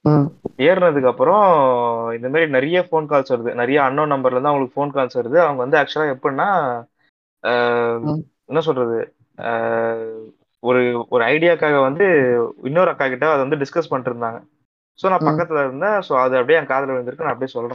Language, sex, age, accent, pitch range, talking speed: Tamil, male, 20-39, native, 125-155 Hz, 100 wpm